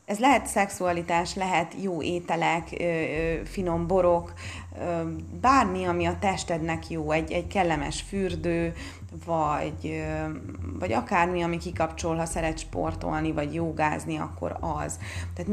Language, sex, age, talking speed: Hungarian, female, 30-49, 130 wpm